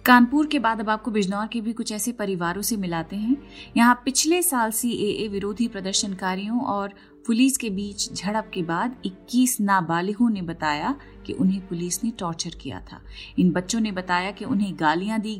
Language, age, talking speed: Hindi, 30-49, 185 wpm